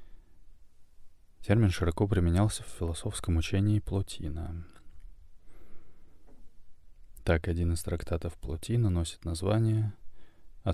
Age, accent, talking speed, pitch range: 20-39, native, 85 wpm, 80-100 Hz